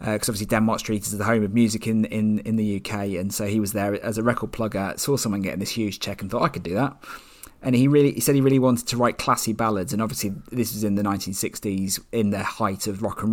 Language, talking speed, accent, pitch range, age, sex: English, 275 wpm, British, 100-120 Hz, 30-49, male